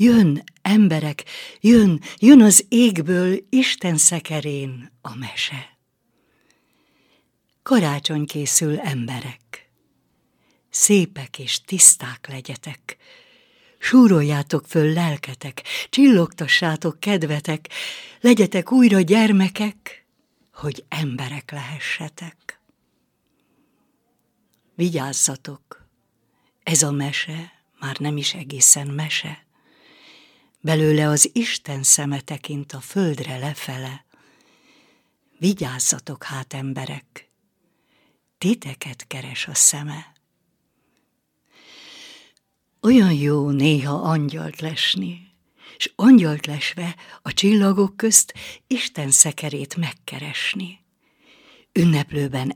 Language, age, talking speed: Hungarian, 60-79, 75 wpm